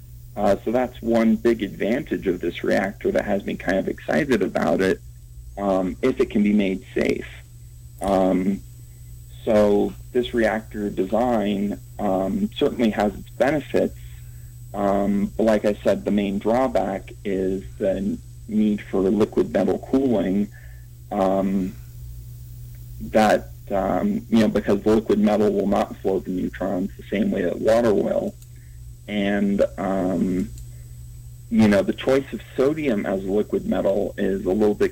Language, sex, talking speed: English, male, 145 wpm